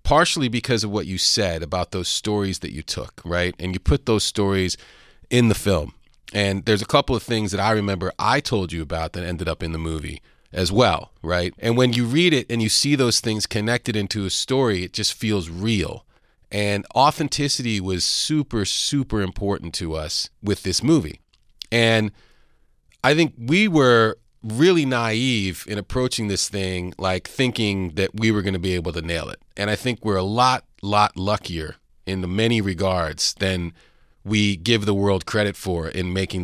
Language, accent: English, American